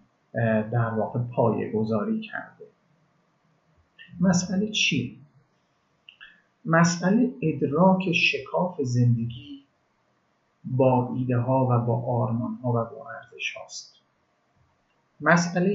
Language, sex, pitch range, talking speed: Persian, male, 120-170 Hz, 90 wpm